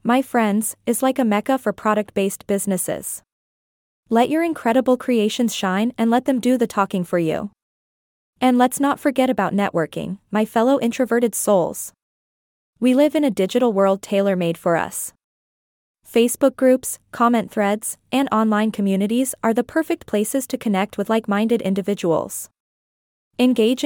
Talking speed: 155 wpm